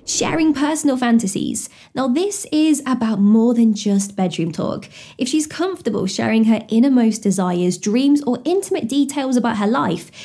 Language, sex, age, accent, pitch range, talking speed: English, female, 20-39, British, 220-295 Hz, 150 wpm